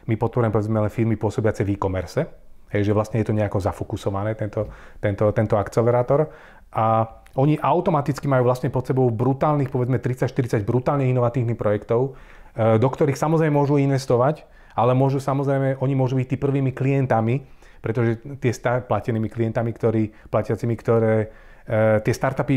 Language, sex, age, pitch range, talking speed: Slovak, male, 30-49, 110-130 Hz, 145 wpm